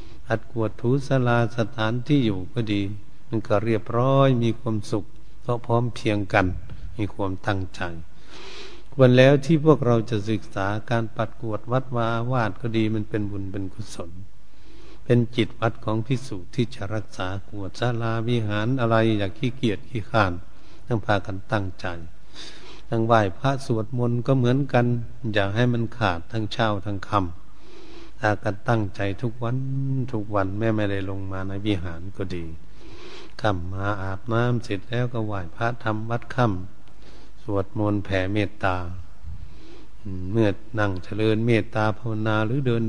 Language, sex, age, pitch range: Thai, male, 70-89, 100-120 Hz